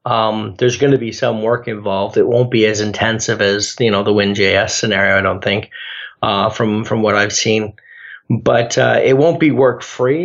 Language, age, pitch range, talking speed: English, 40-59, 110-125 Hz, 205 wpm